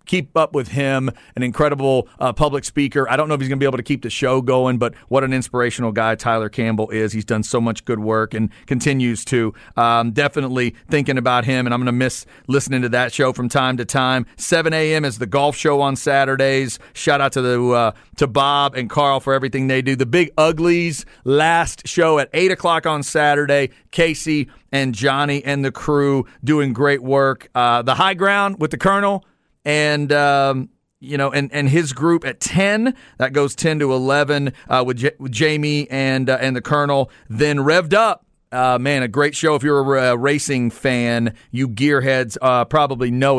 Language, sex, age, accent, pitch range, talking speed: English, male, 40-59, American, 125-145 Hz, 205 wpm